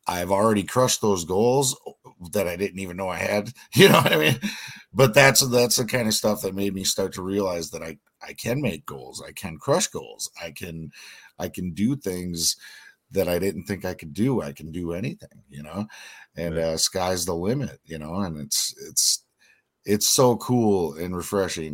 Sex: male